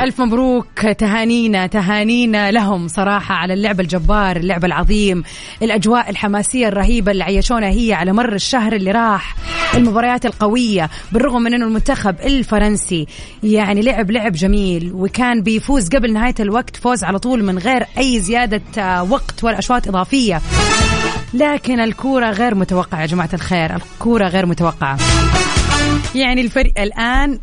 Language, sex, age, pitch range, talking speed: Arabic, female, 30-49, 190-240 Hz, 135 wpm